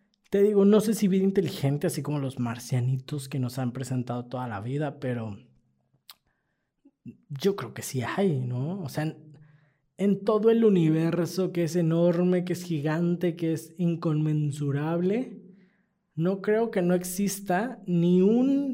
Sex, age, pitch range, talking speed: male, 20-39, 140-185 Hz, 155 wpm